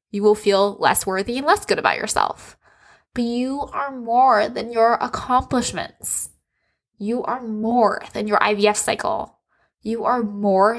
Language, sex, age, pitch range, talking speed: English, female, 10-29, 210-255 Hz, 150 wpm